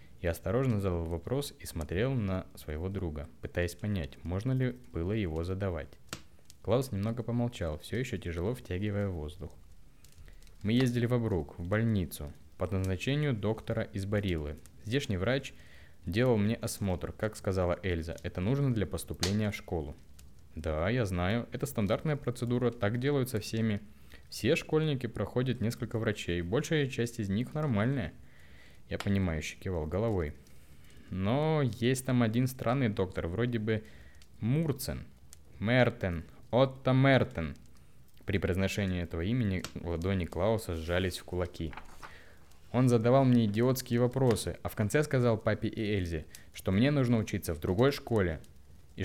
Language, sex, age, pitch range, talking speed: Russian, male, 20-39, 85-120 Hz, 140 wpm